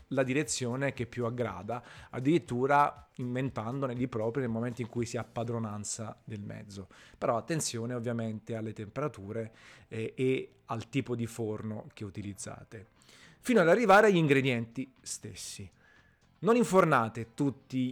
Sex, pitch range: male, 115-135 Hz